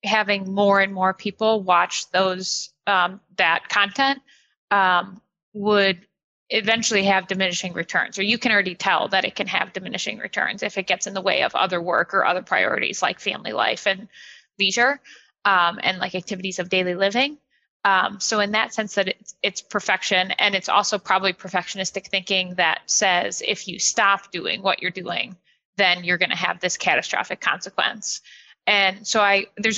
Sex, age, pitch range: female, 20-39, 190-225 Hz